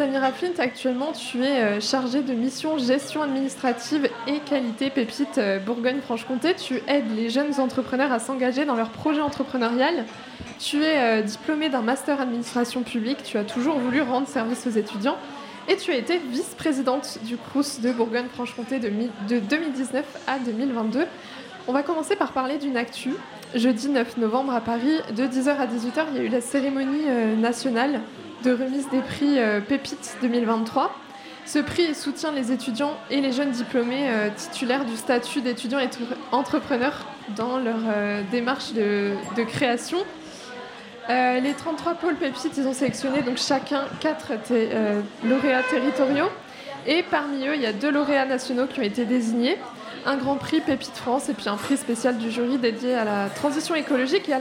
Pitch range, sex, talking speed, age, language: 240-285 Hz, female, 160 wpm, 20-39, French